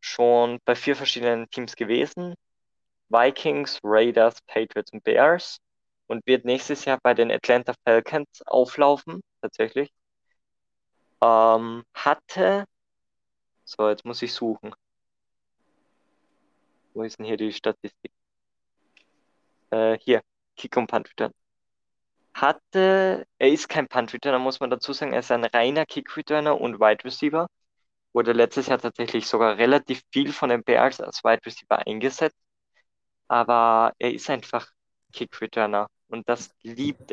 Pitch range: 115-145 Hz